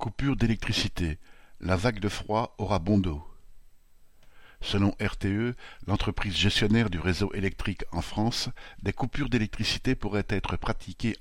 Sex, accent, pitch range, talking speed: male, French, 95-115 Hz, 130 wpm